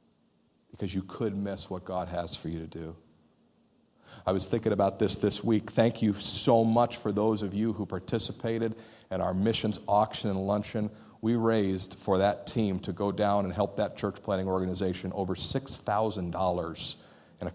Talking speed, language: 180 wpm, English